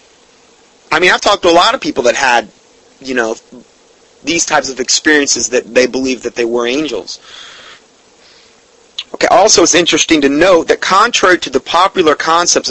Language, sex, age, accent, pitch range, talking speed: English, male, 30-49, American, 150-230 Hz, 170 wpm